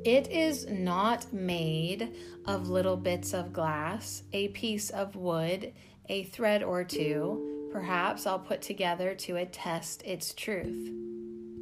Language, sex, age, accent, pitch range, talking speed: English, female, 30-49, American, 130-195 Hz, 130 wpm